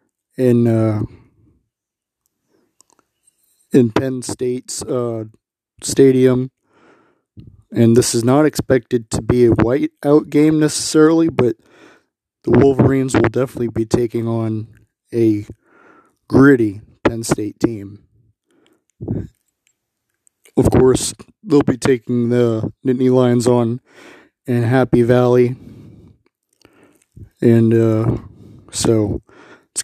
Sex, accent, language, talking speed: male, American, English, 95 wpm